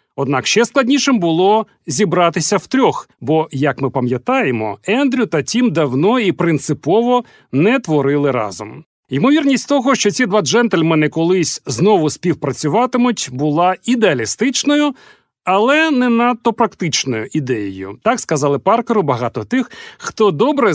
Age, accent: 40-59, native